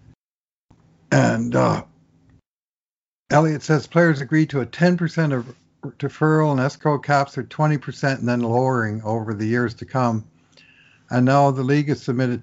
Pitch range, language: 110-135 Hz, English